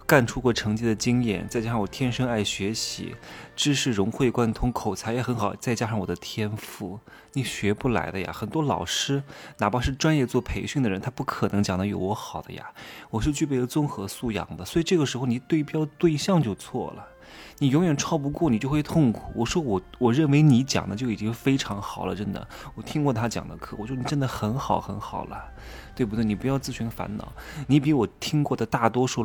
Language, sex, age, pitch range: Chinese, male, 20-39, 105-135 Hz